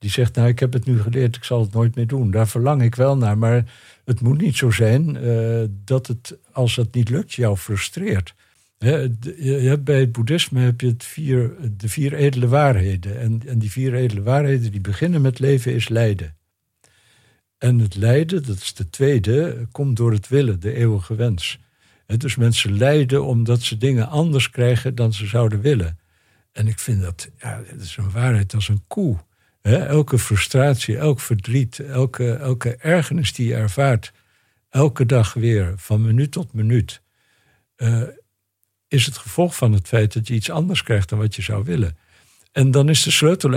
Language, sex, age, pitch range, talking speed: Dutch, male, 60-79, 110-135 Hz, 190 wpm